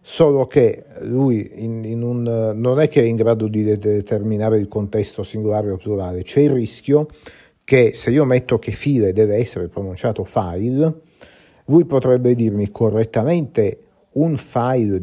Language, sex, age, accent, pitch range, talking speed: Italian, male, 50-69, native, 105-135 Hz, 140 wpm